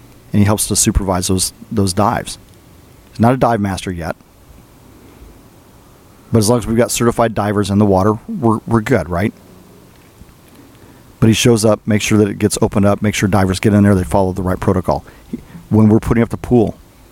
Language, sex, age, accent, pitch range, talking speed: English, male, 40-59, American, 95-115 Hz, 200 wpm